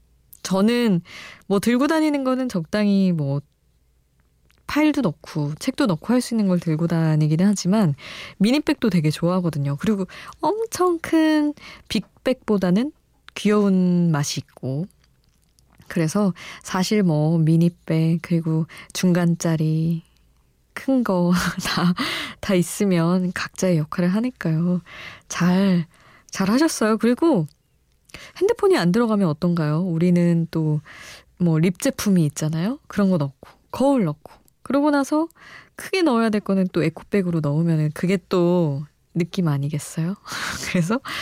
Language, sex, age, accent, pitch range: Korean, female, 20-39, native, 160-215 Hz